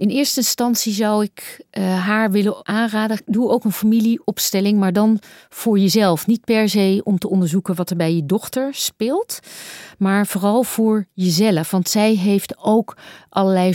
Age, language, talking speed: 40-59, Dutch, 165 wpm